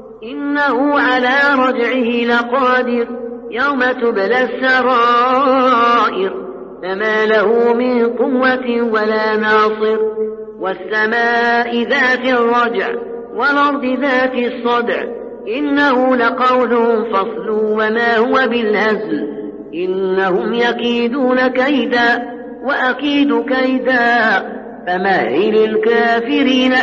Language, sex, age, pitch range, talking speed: Finnish, female, 50-69, 220-255 Hz, 70 wpm